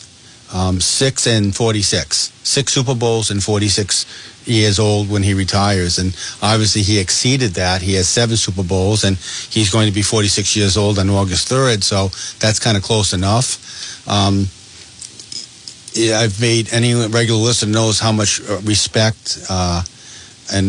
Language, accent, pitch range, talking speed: English, American, 100-115 Hz, 155 wpm